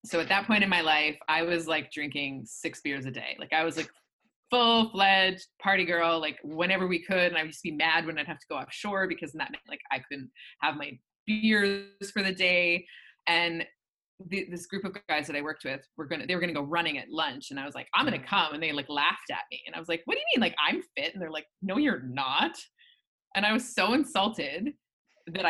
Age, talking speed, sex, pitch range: 20-39, 255 wpm, female, 160-200 Hz